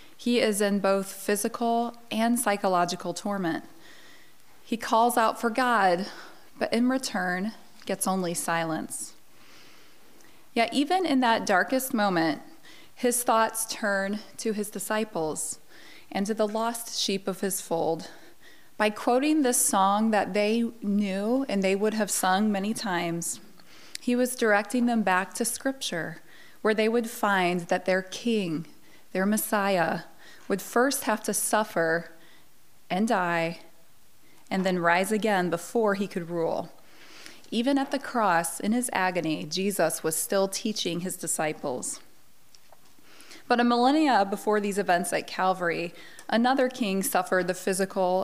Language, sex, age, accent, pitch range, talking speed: English, female, 20-39, American, 180-230 Hz, 135 wpm